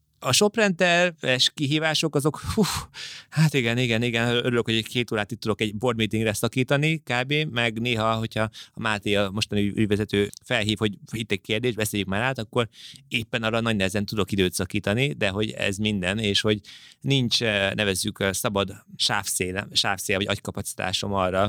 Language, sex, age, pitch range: Hungarian, male, 30-49, 95-120 Hz